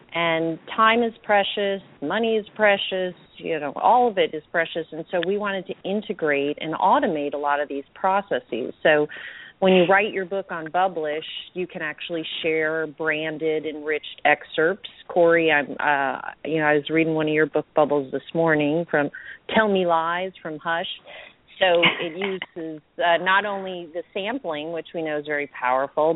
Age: 40-59